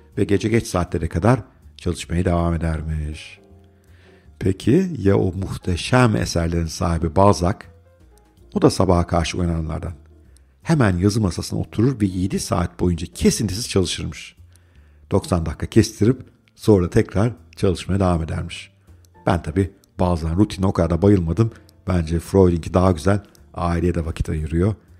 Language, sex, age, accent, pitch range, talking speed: Turkish, male, 50-69, native, 85-105 Hz, 125 wpm